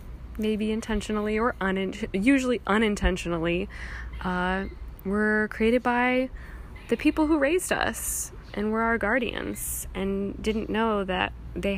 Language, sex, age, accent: English, female, 20-39, American